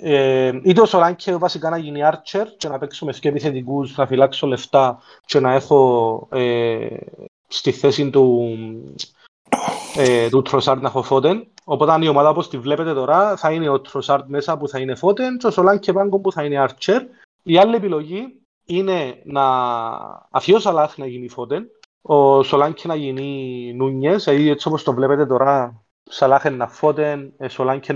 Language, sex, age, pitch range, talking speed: Greek, male, 30-49, 135-185 Hz, 160 wpm